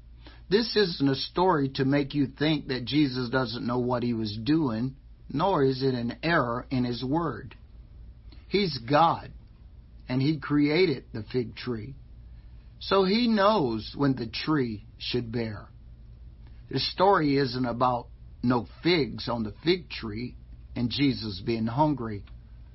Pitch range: 115-145 Hz